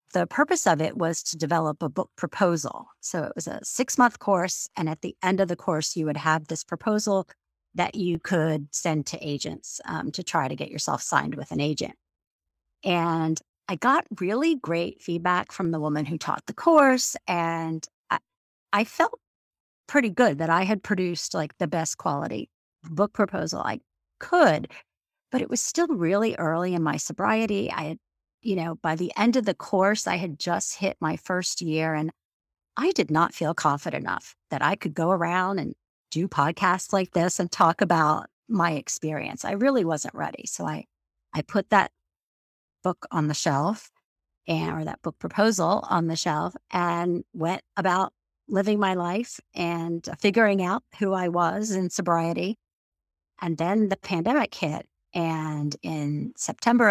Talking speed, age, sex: 175 wpm, 40-59, female